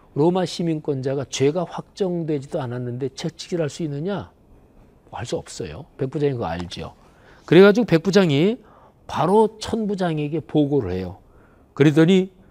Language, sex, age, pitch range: Korean, male, 40-59, 115-160 Hz